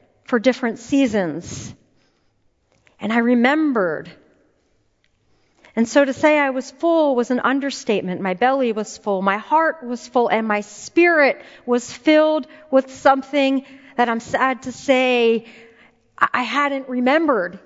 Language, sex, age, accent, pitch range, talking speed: English, female, 40-59, American, 225-295 Hz, 135 wpm